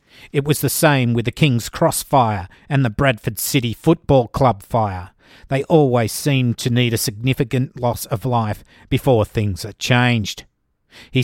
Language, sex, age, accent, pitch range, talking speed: English, male, 50-69, Australian, 115-140 Hz, 165 wpm